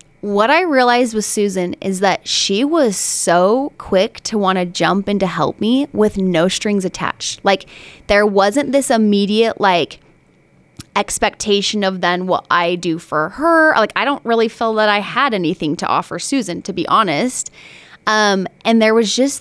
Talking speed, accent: 175 wpm, American